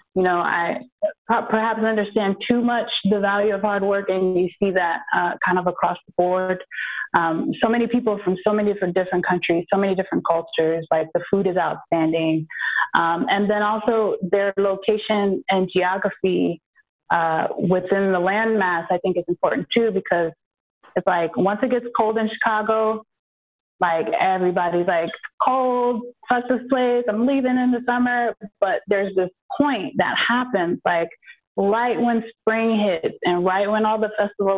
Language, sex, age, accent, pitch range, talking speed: English, female, 20-39, American, 175-220 Hz, 165 wpm